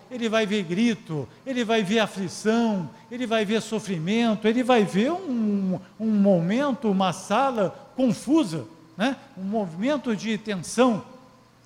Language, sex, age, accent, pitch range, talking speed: Portuguese, male, 50-69, Brazilian, 180-240 Hz, 135 wpm